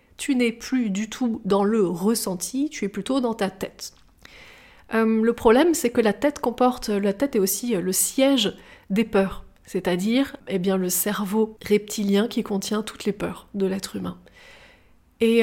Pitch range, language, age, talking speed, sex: 205-245 Hz, French, 30-49, 175 wpm, female